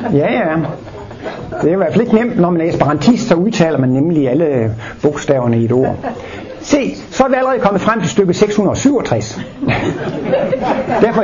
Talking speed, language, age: 170 wpm, Danish, 60-79